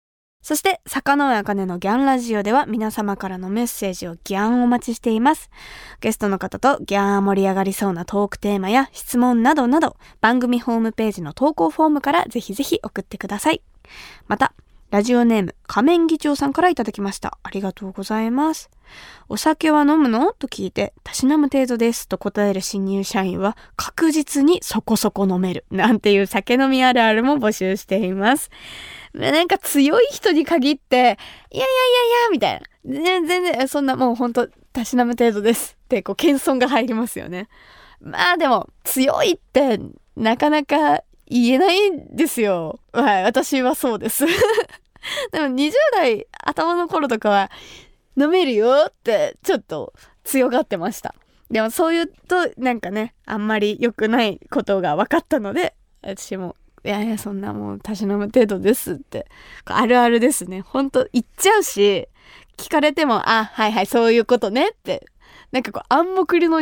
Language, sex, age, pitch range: Japanese, female, 20-39, 205-295 Hz